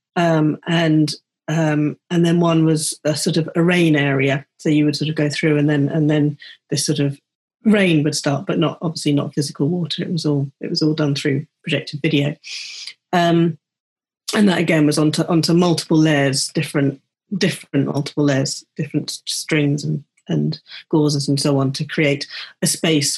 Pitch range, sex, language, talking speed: 150-175 Hz, female, English, 185 wpm